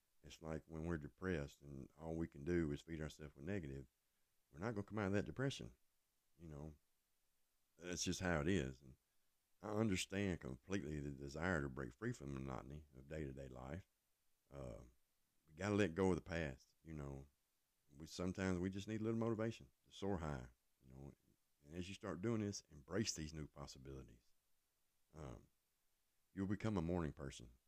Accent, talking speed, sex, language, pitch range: American, 185 wpm, male, English, 70-100 Hz